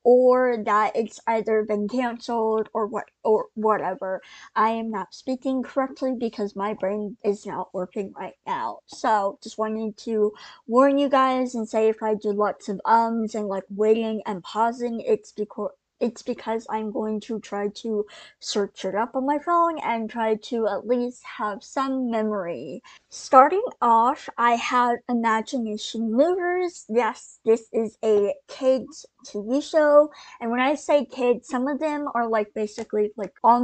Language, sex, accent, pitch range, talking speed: English, male, American, 210-260 Hz, 165 wpm